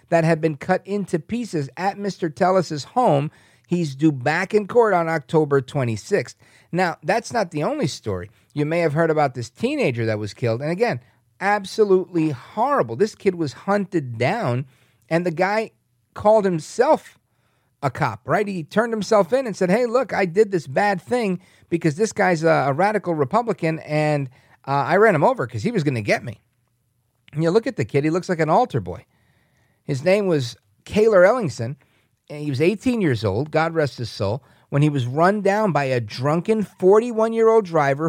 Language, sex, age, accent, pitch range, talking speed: English, male, 40-59, American, 125-190 Hz, 190 wpm